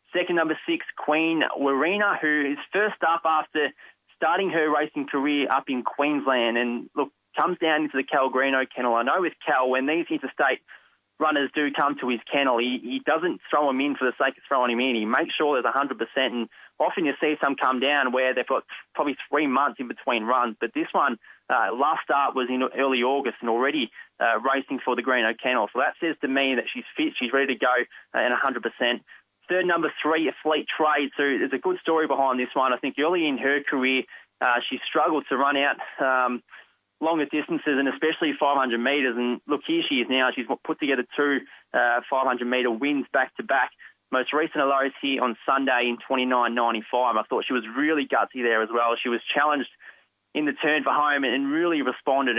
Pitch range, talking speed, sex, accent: 125-150 Hz, 205 wpm, male, Australian